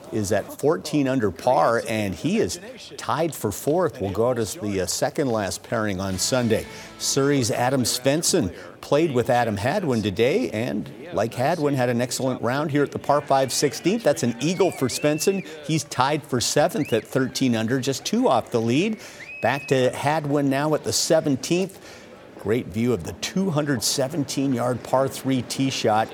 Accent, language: American, English